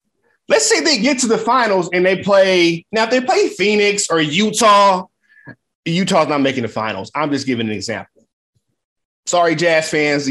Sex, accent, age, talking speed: male, American, 30-49, 175 wpm